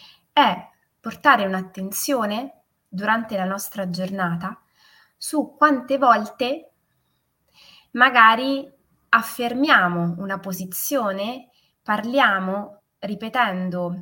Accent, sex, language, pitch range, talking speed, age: native, female, Italian, 185-250 Hz, 70 wpm, 20-39